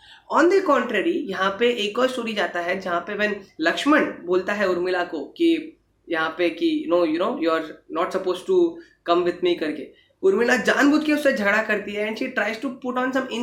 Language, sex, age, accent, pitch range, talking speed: Hindi, female, 20-39, native, 190-270 Hz, 165 wpm